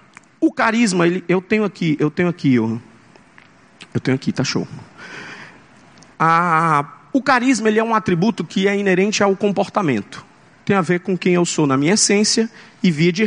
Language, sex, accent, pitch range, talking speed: Portuguese, male, Brazilian, 155-210 Hz, 180 wpm